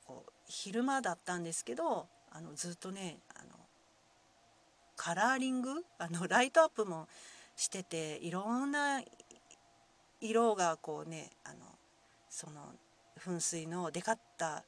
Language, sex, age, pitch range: Japanese, female, 40-59, 165-225 Hz